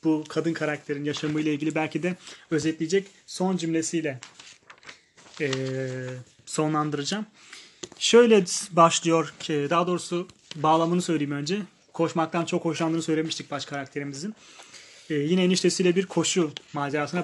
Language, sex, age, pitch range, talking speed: Turkish, male, 30-49, 150-185 Hz, 110 wpm